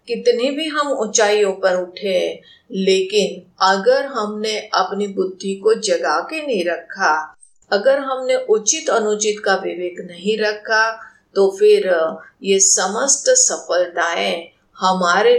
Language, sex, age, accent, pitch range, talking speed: Hindi, female, 50-69, native, 185-255 Hz, 115 wpm